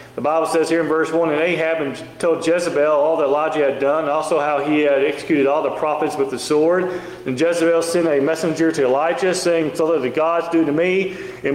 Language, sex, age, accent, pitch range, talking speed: English, male, 40-59, American, 145-170 Hz, 230 wpm